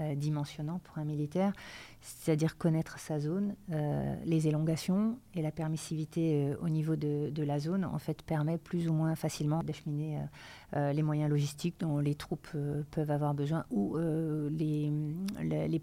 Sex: female